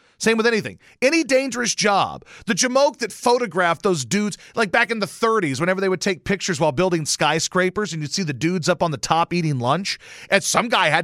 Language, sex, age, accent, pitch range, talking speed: English, male, 40-59, American, 165-230 Hz, 215 wpm